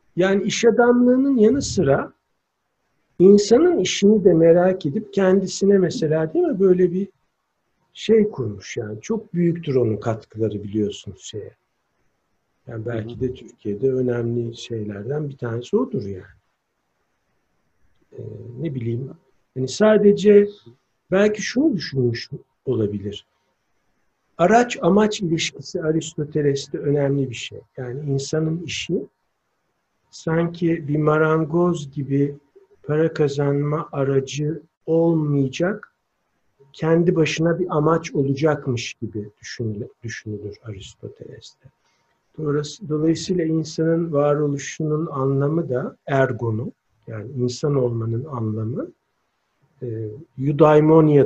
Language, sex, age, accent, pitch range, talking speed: Turkish, male, 60-79, native, 115-165 Hz, 95 wpm